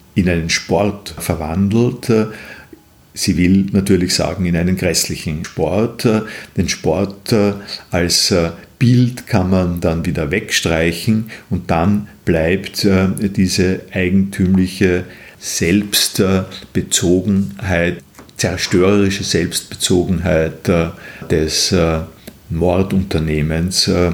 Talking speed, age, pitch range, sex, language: 75 wpm, 50-69, 90-105 Hz, male, German